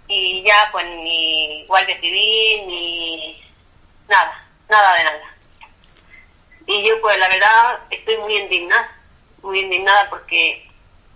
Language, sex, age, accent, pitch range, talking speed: Spanish, female, 30-49, Spanish, 180-215 Hz, 120 wpm